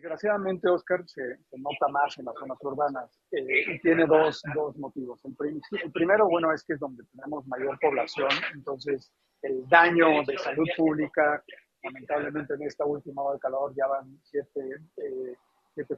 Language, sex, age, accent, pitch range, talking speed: Spanish, male, 50-69, Mexican, 140-170 Hz, 175 wpm